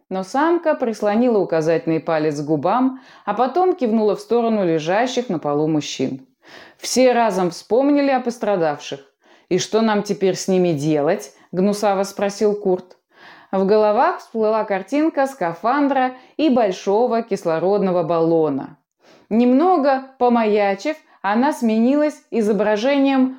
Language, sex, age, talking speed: Russian, female, 20-39, 115 wpm